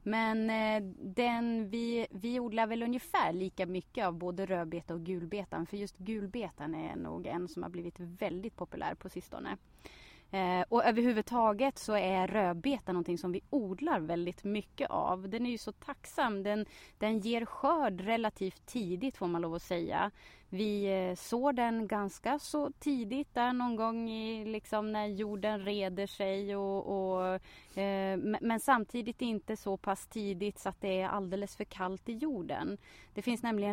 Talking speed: 155 wpm